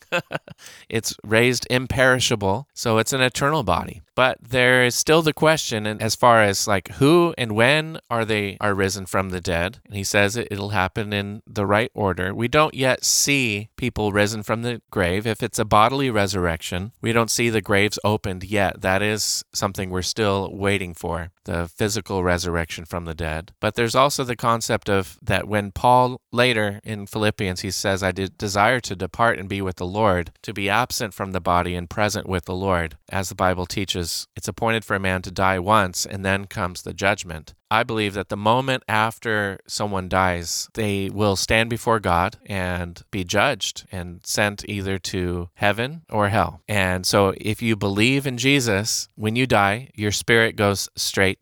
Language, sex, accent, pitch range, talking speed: English, male, American, 95-115 Hz, 185 wpm